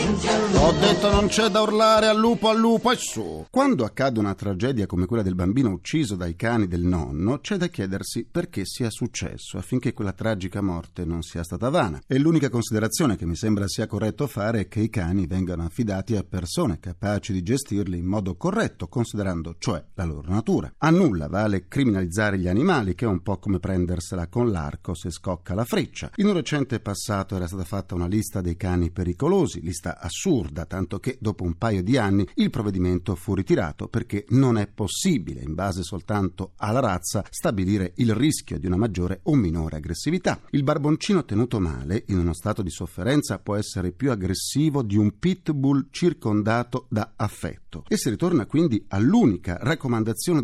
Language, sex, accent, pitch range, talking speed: Italian, male, native, 90-135 Hz, 180 wpm